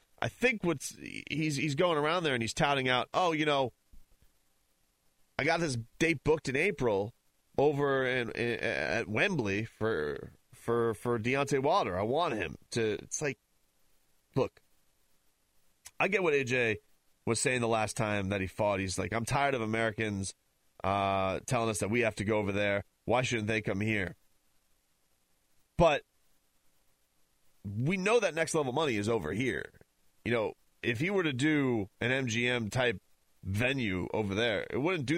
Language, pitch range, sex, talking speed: English, 95-135 Hz, male, 165 wpm